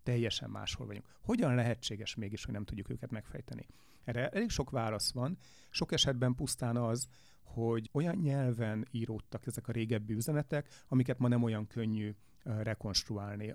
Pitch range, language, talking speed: 110-125 Hz, Hungarian, 150 wpm